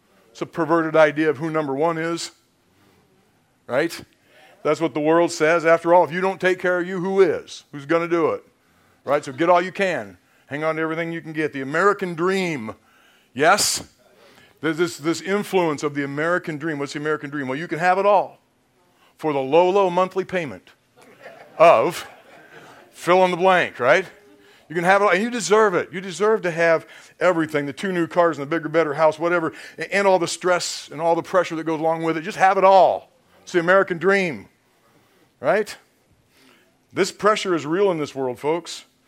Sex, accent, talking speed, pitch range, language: male, American, 205 wpm, 145-180 Hz, English